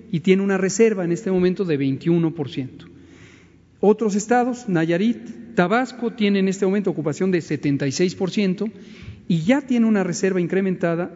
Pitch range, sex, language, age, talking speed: 160-200 Hz, male, Spanish, 40-59, 140 wpm